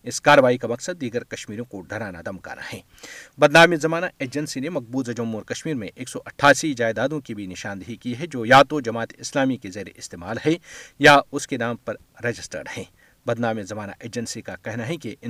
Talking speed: 195 wpm